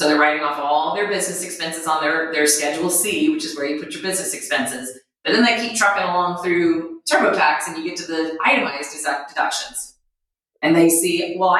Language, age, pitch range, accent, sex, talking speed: English, 30-49, 155-190 Hz, American, female, 215 wpm